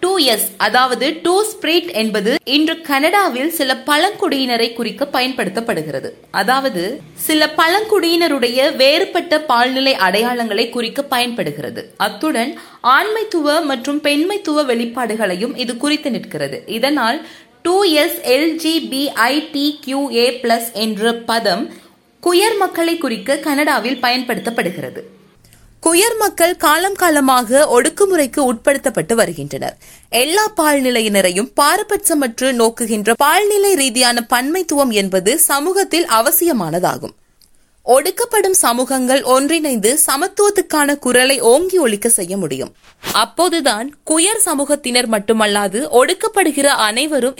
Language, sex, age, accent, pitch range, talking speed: Tamil, female, 20-39, native, 235-325 Hz, 80 wpm